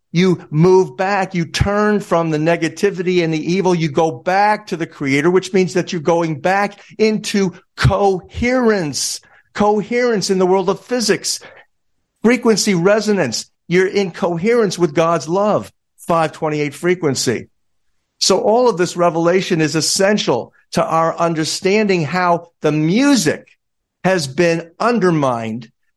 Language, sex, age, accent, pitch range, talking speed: English, male, 50-69, American, 160-195 Hz, 130 wpm